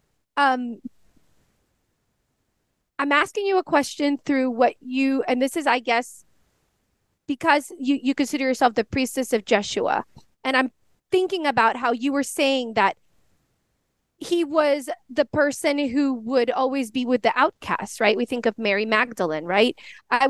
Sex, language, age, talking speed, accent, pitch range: female, English, 30-49, 150 wpm, American, 230-285 Hz